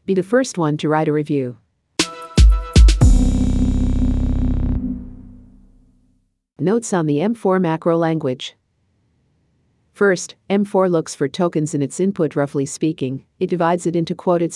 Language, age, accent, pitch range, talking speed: English, 50-69, American, 140-175 Hz, 120 wpm